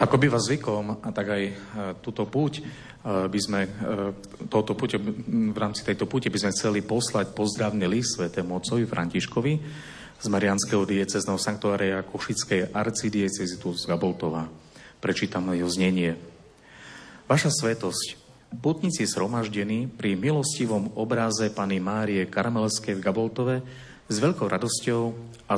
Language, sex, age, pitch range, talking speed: Slovak, male, 40-59, 100-125 Hz, 125 wpm